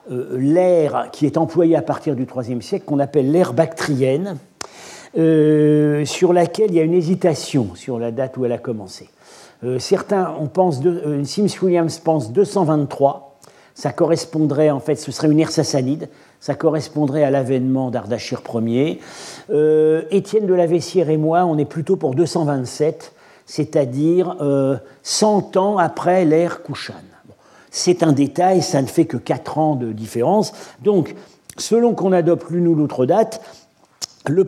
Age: 50-69